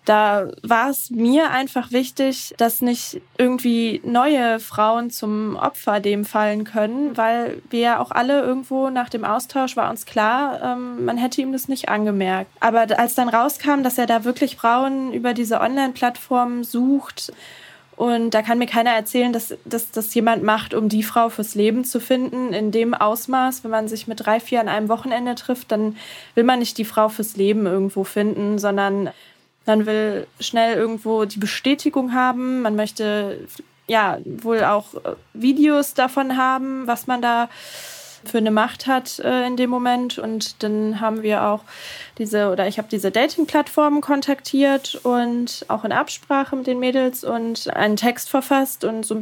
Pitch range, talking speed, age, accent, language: 215-255 Hz, 170 wpm, 20-39, German, German